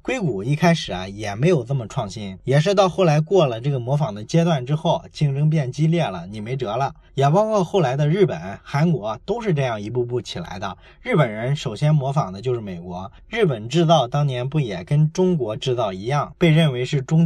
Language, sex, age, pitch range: Chinese, male, 20-39, 110-170 Hz